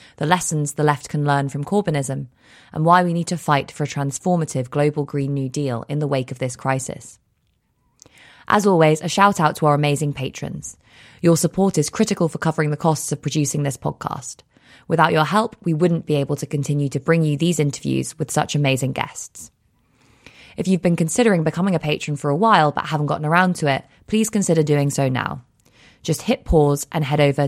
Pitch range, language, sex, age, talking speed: 140-170 Hz, English, female, 20-39, 205 wpm